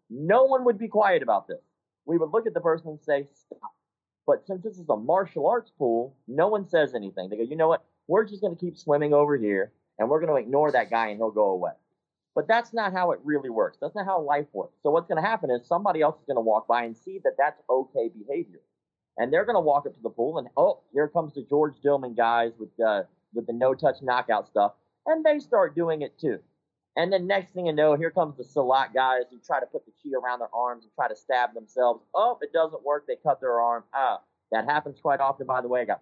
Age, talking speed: 30-49, 260 wpm